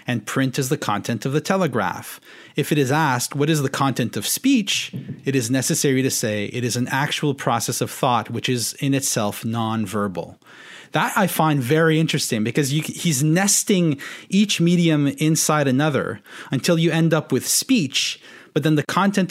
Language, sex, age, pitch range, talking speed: English, male, 30-49, 130-165 Hz, 175 wpm